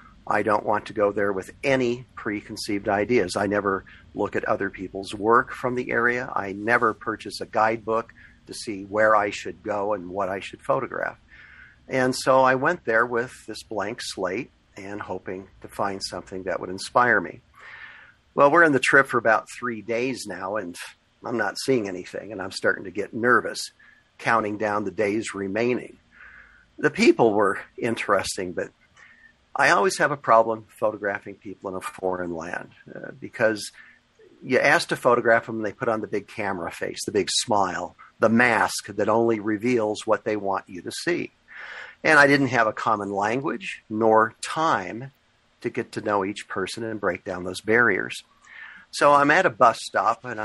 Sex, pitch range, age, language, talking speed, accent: male, 100-120 Hz, 50-69, English, 180 wpm, American